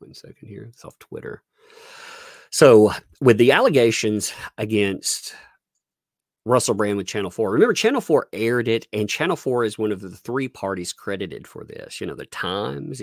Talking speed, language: 170 wpm, English